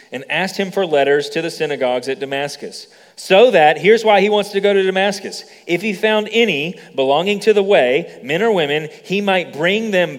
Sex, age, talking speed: male, 30-49, 205 wpm